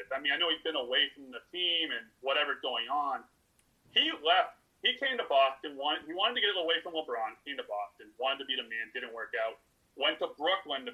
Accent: American